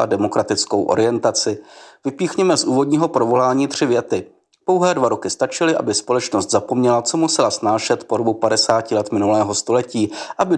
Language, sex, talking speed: Czech, male, 140 wpm